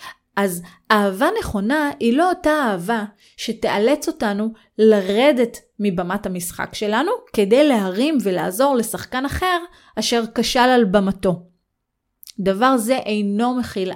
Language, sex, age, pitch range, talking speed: Hebrew, female, 30-49, 195-265 Hz, 110 wpm